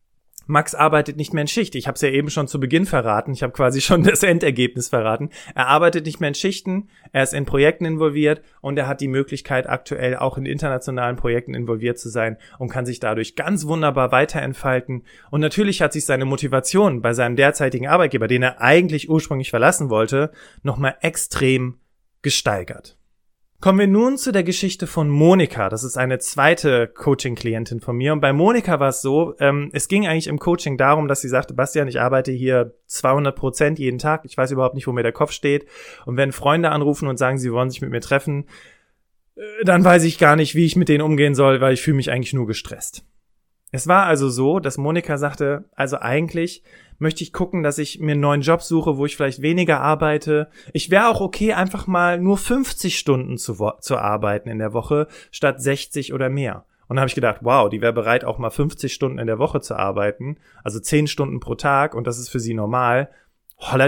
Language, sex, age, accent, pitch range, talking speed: German, male, 30-49, German, 125-160 Hz, 210 wpm